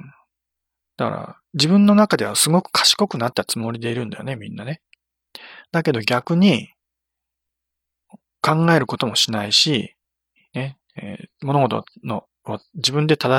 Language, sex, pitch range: Japanese, male, 115-165 Hz